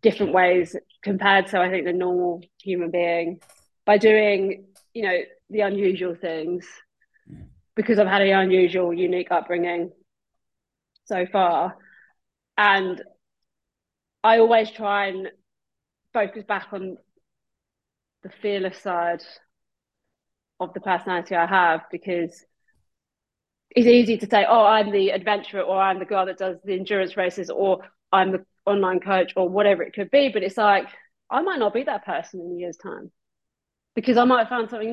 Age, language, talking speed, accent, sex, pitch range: 30-49, English, 155 wpm, British, female, 180-215 Hz